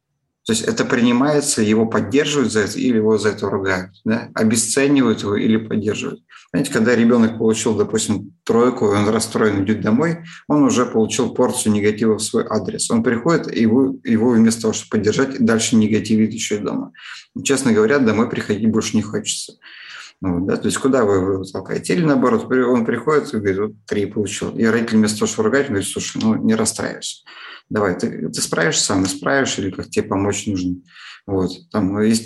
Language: Russian